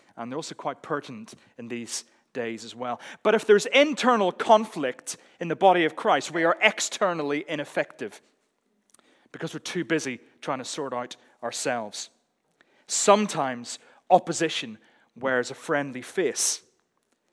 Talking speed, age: 135 wpm, 30-49